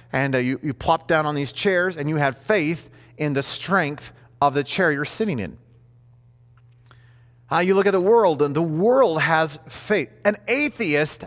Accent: American